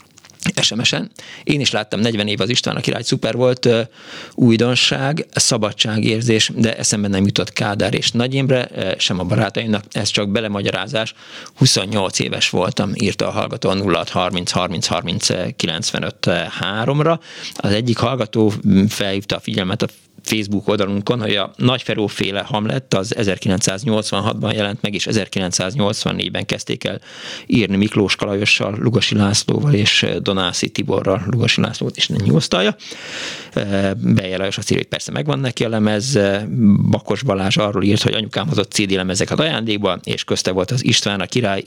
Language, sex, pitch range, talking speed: Hungarian, male, 100-120 Hz, 145 wpm